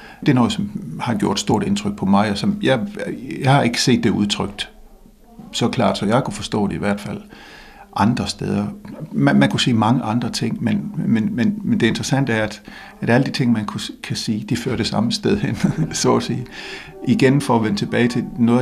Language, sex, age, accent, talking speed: Danish, male, 60-79, native, 220 wpm